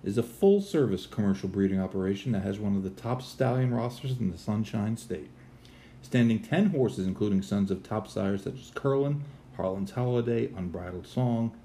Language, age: English, 40-59